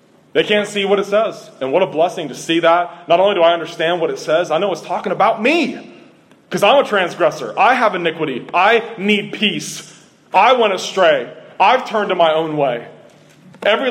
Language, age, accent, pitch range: English, 30-49, American, 140-195 Hz